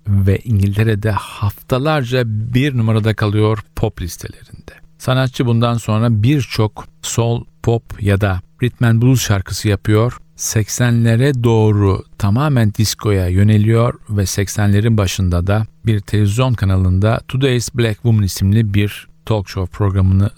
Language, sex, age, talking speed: Turkish, male, 50-69, 120 wpm